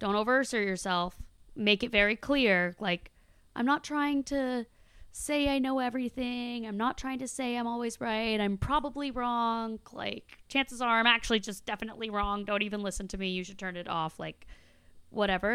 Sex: female